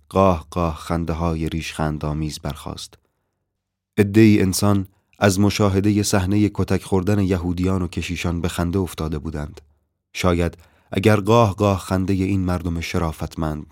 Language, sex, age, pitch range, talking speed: Persian, male, 30-49, 80-95 Hz, 140 wpm